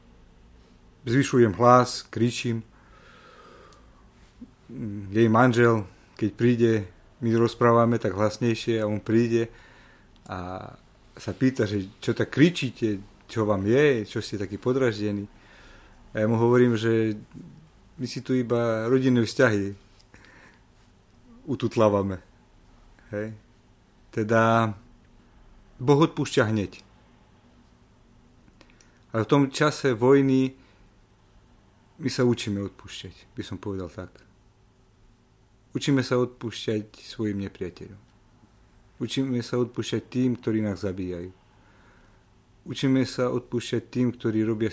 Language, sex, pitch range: Slovak, male, 100-120 Hz